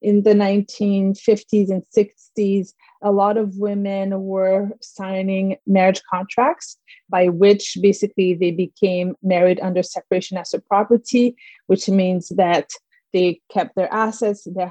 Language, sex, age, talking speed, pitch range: English, female, 30-49, 130 wpm, 185-215 Hz